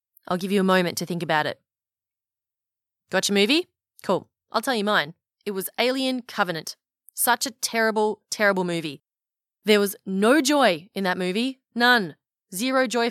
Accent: Australian